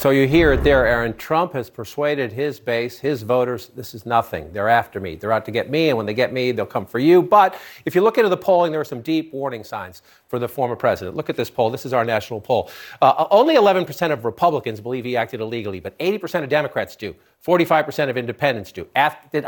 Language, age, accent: English, 50-69, American